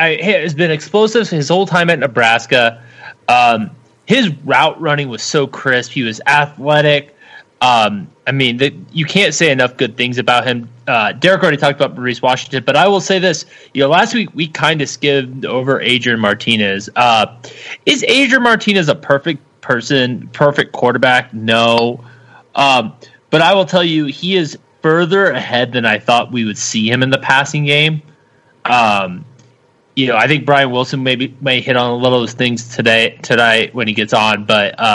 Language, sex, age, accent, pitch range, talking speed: English, male, 30-49, American, 120-150 Hz, 185 wpm